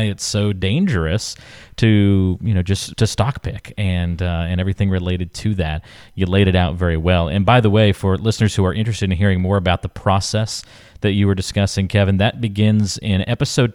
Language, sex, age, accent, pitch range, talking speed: English, male, 40-59, American, 90-105 Hz, 205 wpm